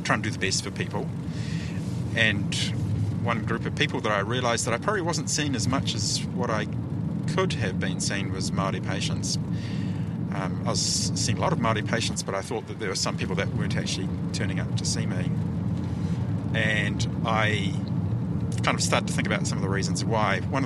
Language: English